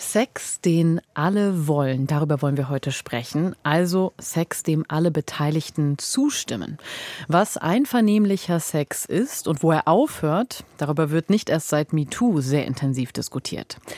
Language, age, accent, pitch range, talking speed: German, 30-49, German, 150-195 Hz, 135 wpm